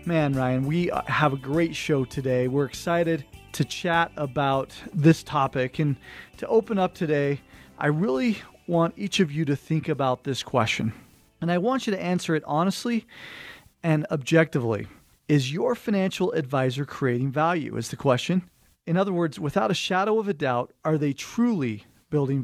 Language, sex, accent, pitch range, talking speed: English, male, American, 135-180 Hz, 170 wpm